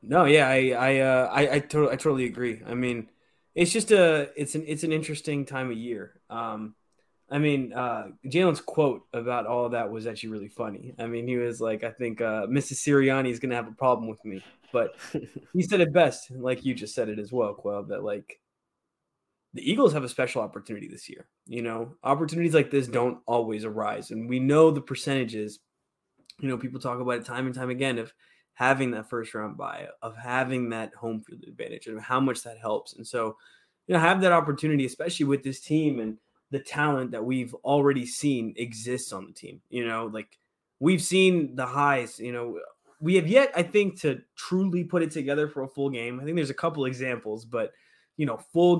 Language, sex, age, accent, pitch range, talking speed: English, male, 20-39, American, 120-155 Hz, 215 wpm